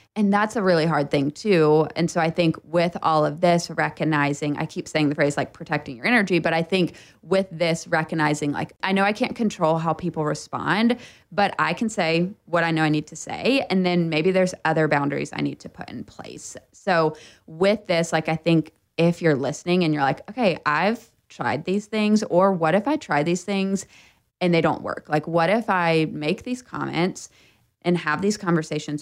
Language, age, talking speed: English, 20-39, 210 wpm